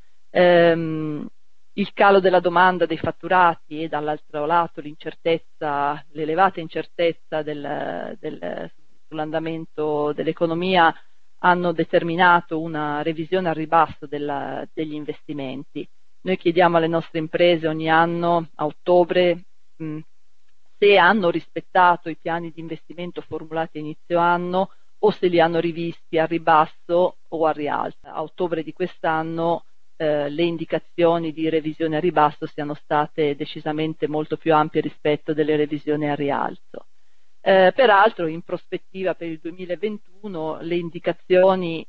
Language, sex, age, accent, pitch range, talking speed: Italian, female, 40-59, native, 155-170 Hz, 125 wpm